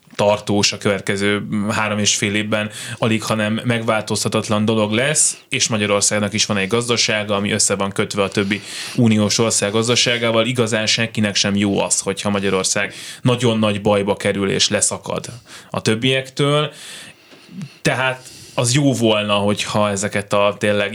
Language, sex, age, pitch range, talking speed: Hungarian, male, 20-39, 100-120 Hz, 145 wpm